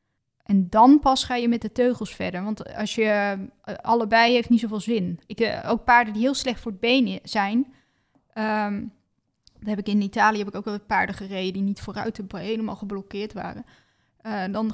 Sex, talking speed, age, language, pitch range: female, 195 wpm, 20-39, Dutch, 200-230 Hz